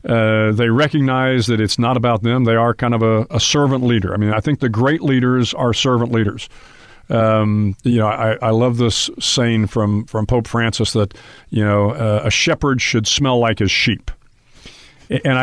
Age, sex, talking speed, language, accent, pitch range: 50-69, male, 195 wpm, English, American, 110-130 Hz